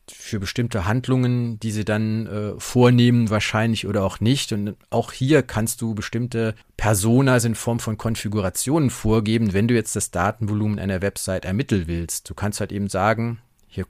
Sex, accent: male, German